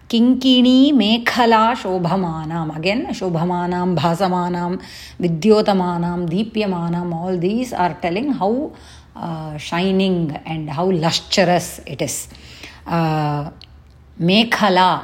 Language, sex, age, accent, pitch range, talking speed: English, female, 30-49, Indian, 160-200 Hz, 90 wpm